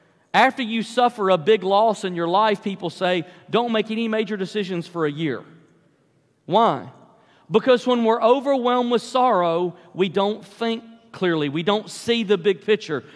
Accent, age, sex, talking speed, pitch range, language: American, 40-59, male, 165 wpm, 195-255 Hz, English